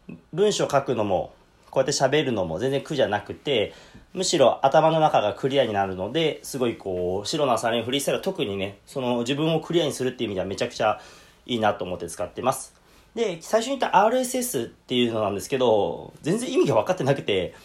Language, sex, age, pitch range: Japanese, male, 30-49, 115-170 Hz